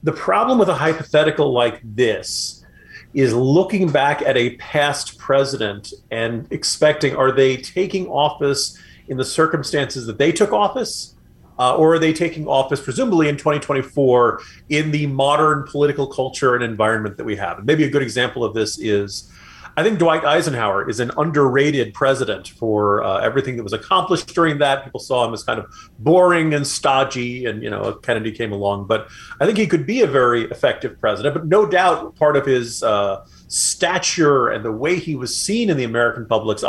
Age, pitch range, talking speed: 40-59, 120-155 Hz, 185 wpm